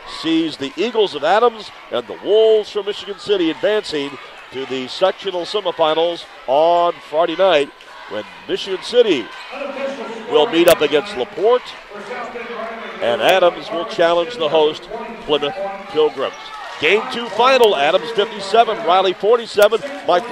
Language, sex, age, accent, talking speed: English, male, 50-69, American, 125 wpm